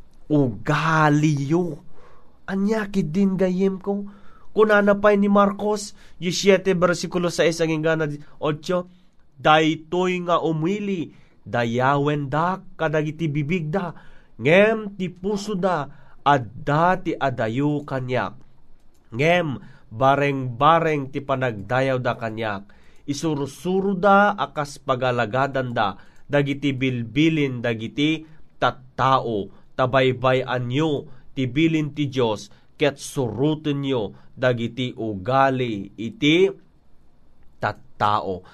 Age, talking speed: 30-49, 85 wpm